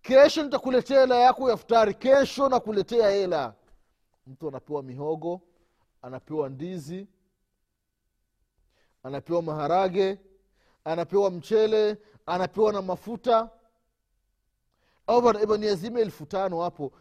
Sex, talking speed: male, 90 wpm